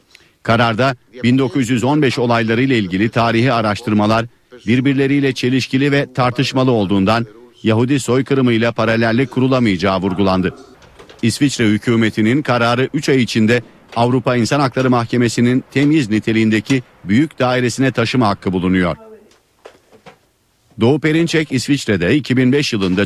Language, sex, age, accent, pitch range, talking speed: Turkish, male, 50-69, native, 105-130 Hz, 100 wpm